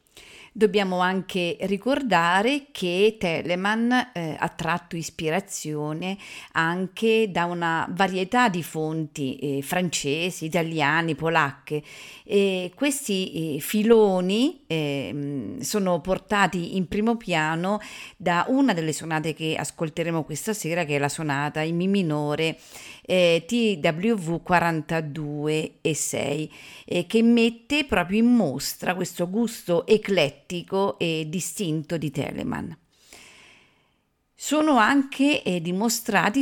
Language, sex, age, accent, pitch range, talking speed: Italian, female, 40-59, native, 160-210 Hz, 110 wpm